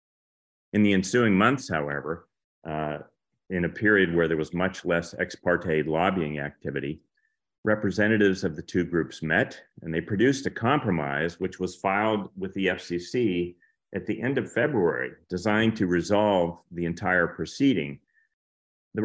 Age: 40-59